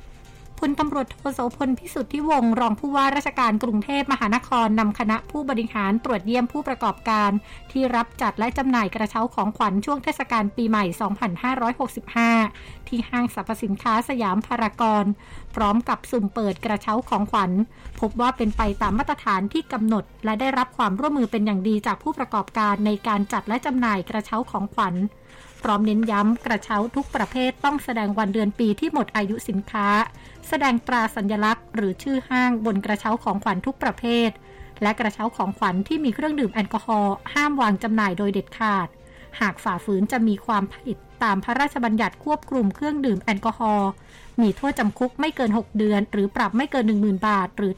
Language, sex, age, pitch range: Thai, female, 60-79, 205-250 Hz